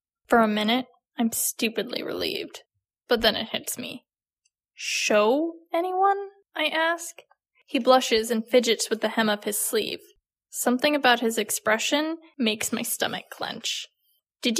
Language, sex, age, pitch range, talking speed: English, female, 10-29, 210-295 Hz, 140 wpm